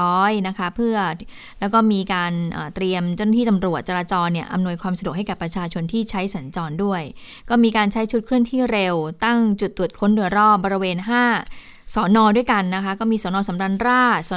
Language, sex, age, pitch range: Thai, female, 20-39, 185-225 Hz